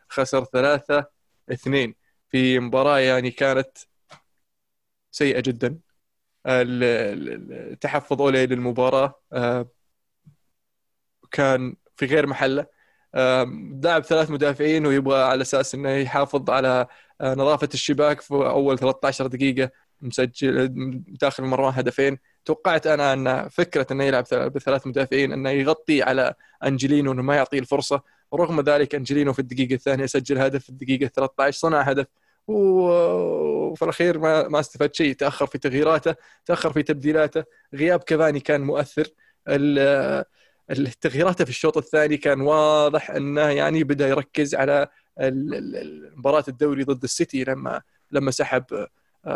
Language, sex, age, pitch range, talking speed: Arabic, male, 20-39, 130-150 Hz, 120 wpm